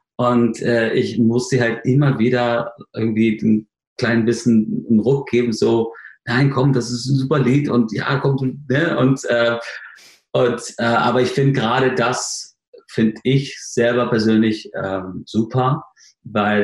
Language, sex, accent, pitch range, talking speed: German, male, German, 105-125 Hz, 155 wpm